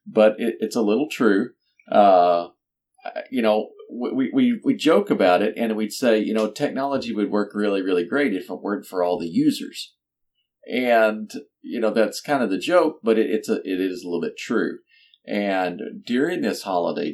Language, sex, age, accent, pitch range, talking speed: English, male, 40-59, American, 100-140 Hz, 195 wpm